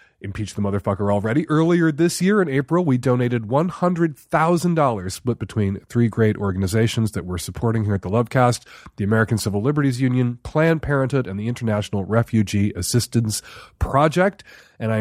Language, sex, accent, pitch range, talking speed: English, male, American, 110-150 Hz, 155 wpm